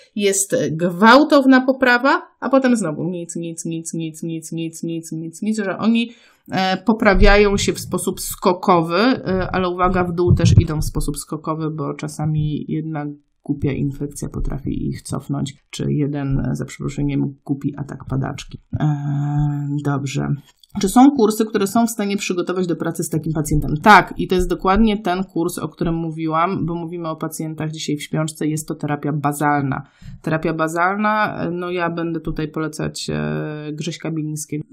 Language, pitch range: Polish, 155-205 Hz